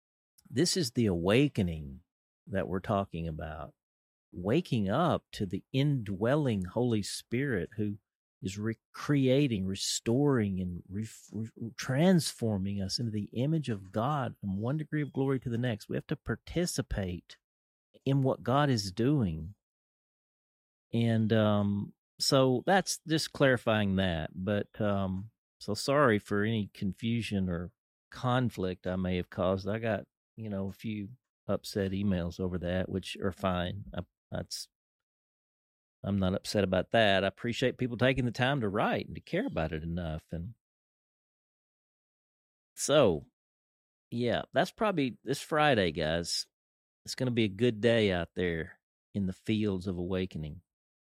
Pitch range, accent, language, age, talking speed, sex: 95-125 Hz, American, English, 50-69, 140 wpm, male